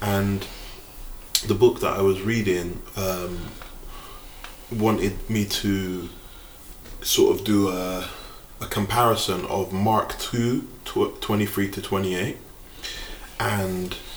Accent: British